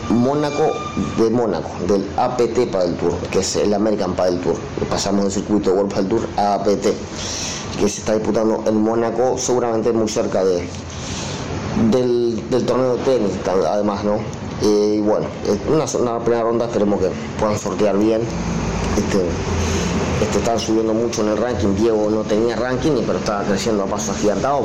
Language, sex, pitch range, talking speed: Spanish, male, 100-115 Hz, 175 wpm